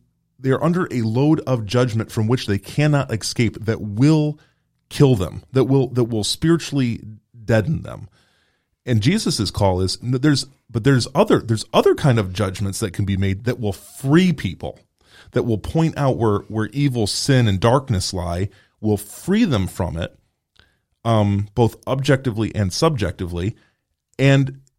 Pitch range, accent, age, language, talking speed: 105-135 Hz, American, 30-49, English, 160 wpm